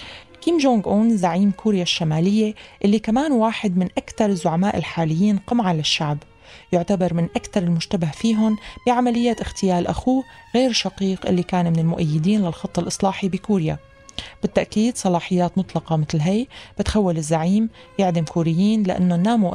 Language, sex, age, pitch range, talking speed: Arabic, female, 30-49, 170-210 Hz, 130 wpm